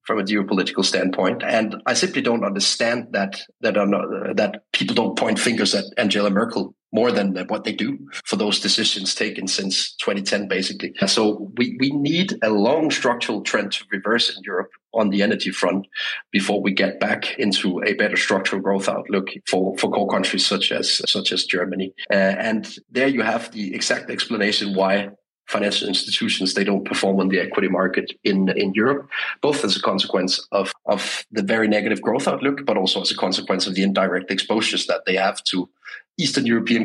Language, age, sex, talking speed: English, 30-49, male, 185 wpm